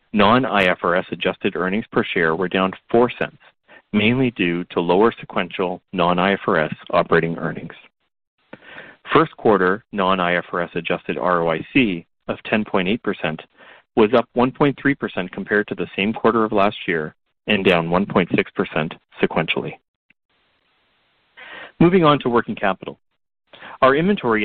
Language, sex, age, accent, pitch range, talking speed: English, male, 40-59, American, 90-125 Hz, 120 wpm